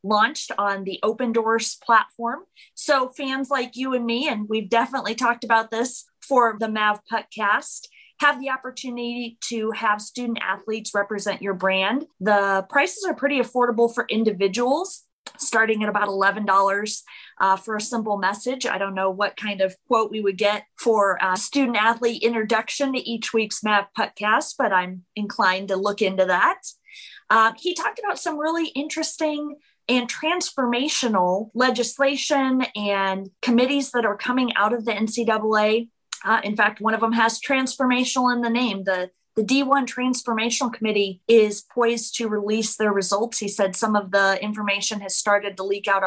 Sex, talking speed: female, 165 wpm